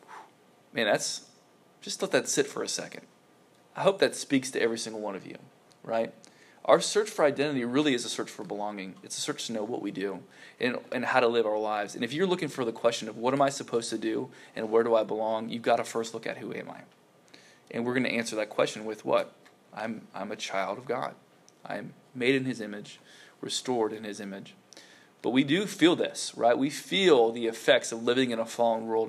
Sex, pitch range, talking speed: male, 110-135 Hz, 235 wpm